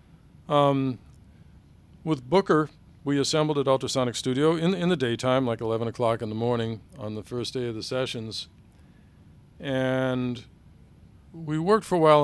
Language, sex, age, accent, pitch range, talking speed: English, male, 50-69, American, 115-145 Hz, 150 wpm